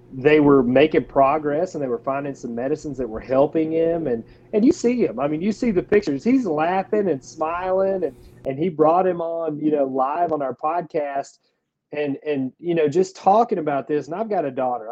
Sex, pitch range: male, 130-165 Hz